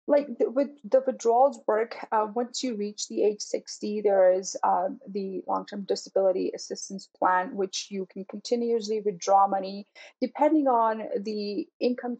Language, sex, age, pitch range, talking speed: English, female, 30-49, 200-255 Hz, 155 wpm